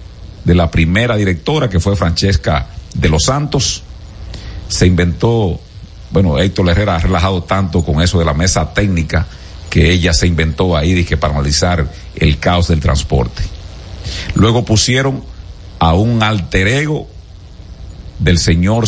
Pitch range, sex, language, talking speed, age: 85-115 Hz, male, Spanish, 135 wpm, 50-69